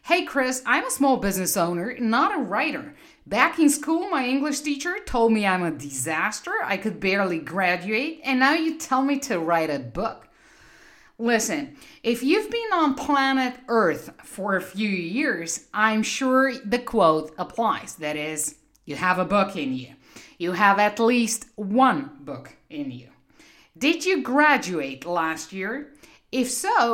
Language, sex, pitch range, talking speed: English, female, 195-285 Hz, 165 wpm